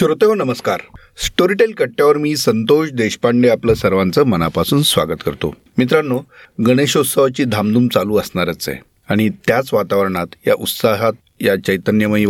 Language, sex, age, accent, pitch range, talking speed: Marathi, male, 40-59, native, 95-125 Hz, 125 wpm